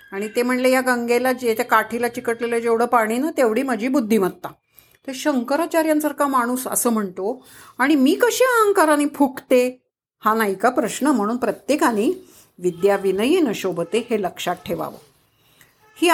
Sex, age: female, 50-69